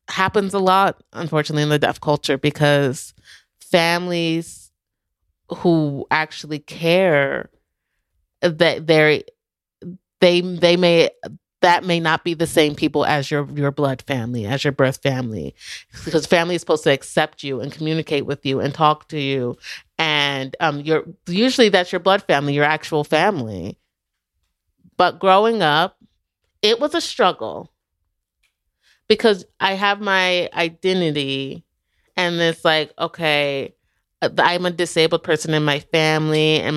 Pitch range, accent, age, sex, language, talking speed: 145-175 Hz, American, 30-49, female, English, 135 wpm